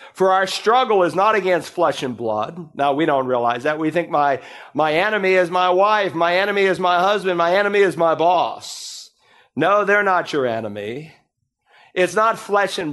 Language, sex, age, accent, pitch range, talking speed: English, male, 50-69, American, 175-220 Hz, 190 wpm